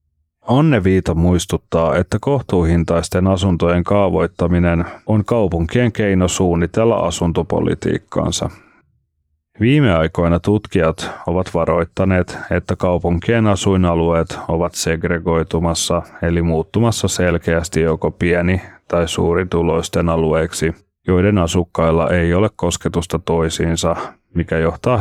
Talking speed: 90 wpm